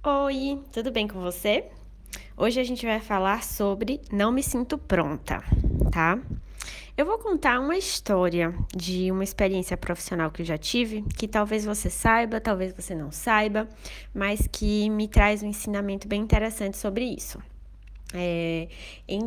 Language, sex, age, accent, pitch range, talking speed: Portuguese, female, 20-39, Brazilian, 185-240 Hz, 150 wpm